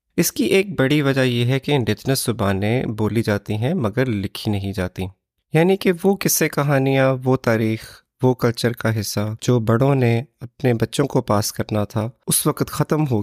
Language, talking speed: Urdu, 185 wpm